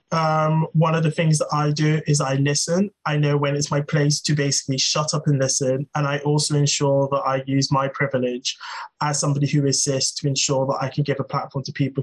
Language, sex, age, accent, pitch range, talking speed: English, male, 20-39, British, 135-155 Hz, 230 wpm